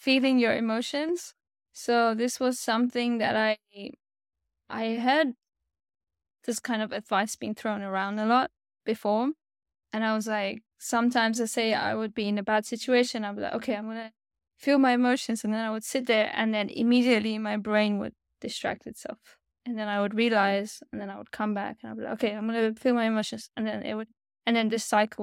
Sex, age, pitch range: female, 10-29, 205-235 Hz